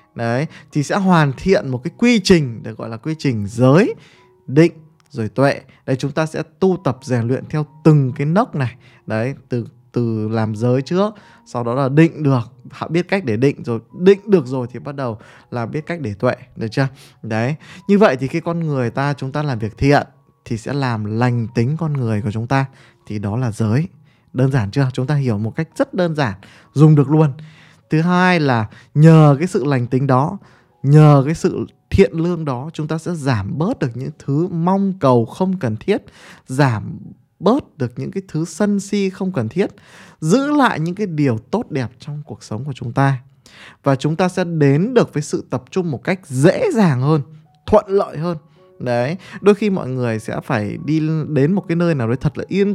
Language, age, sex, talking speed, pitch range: Vietnamese, 20-39, male, 215 wpm, 125-170 Hz